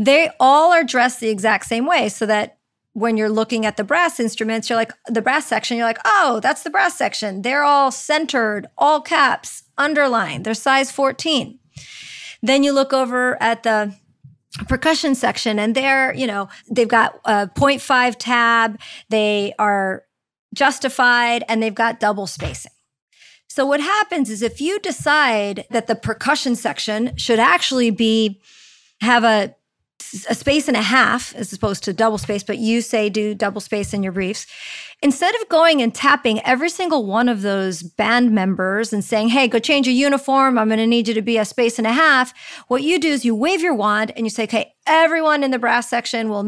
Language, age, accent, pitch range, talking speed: English, 40-59, American, 220-270 Hz, 190 wpm